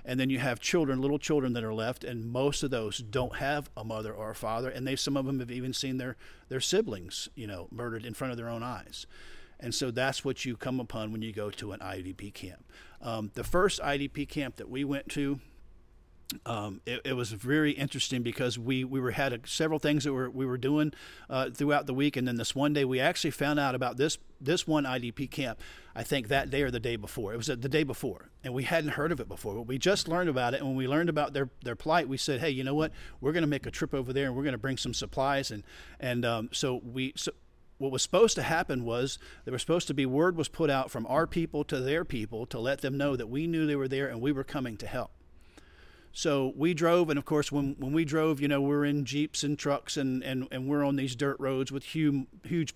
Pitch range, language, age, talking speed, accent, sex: 125-145 Hz, English, 50-69, 260 wpm, American, male